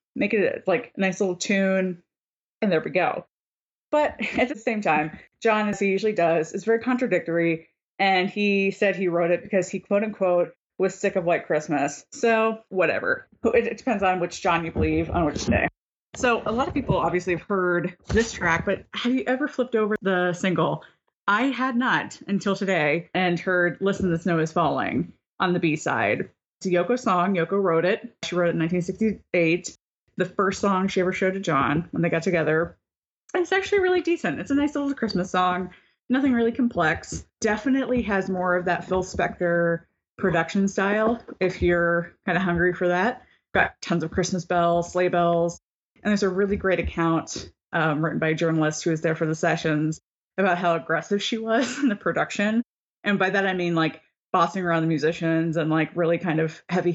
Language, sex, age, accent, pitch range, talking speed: English, female, 20-39, American, 170-215 Hz, 195 wpm